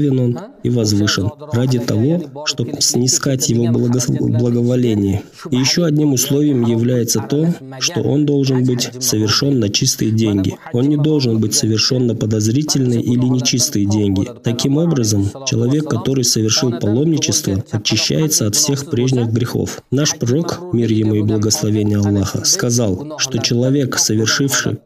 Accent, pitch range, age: native, 110-140 Hz, 20-39